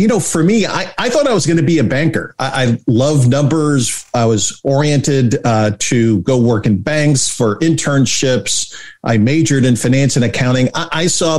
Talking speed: 200 wpm